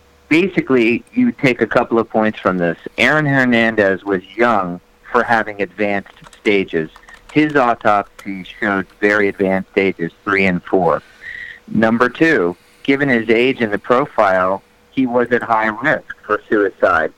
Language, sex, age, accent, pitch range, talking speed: English, male, 40-59, American, 100-130 Hz, 145 wpm